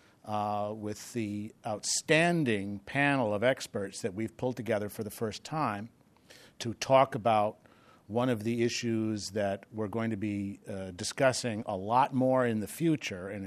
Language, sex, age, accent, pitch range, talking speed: English, male, 50-69, American, 110-135 Hz, 160 wpm